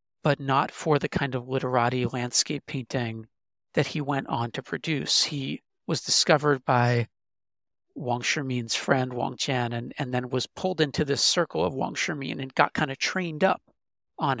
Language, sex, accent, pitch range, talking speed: English, male, American, 125-155 Hz, 175 wpm